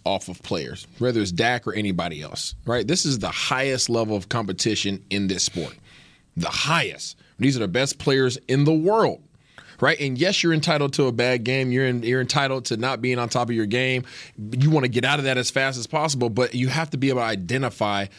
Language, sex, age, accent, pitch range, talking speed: English, male, 30-49, American, 125-175 Hz, 230 wpm